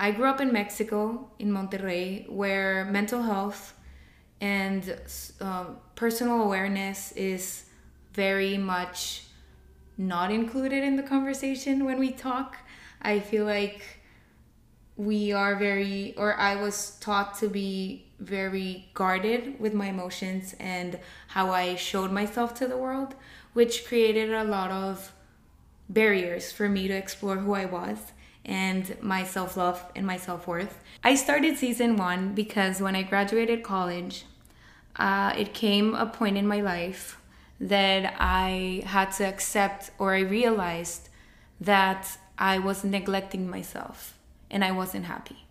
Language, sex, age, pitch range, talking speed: Spanish, female, 20-39, 190-220 Hz, 135 wpm